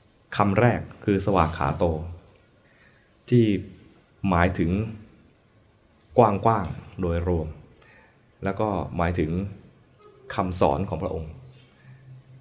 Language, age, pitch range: Thai, 20-39, 90-105 Hz